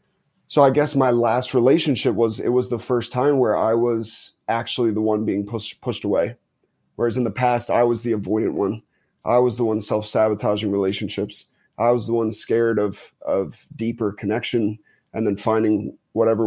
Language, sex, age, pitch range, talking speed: English, male, 20-39, 105-120 Hz, 180 wpm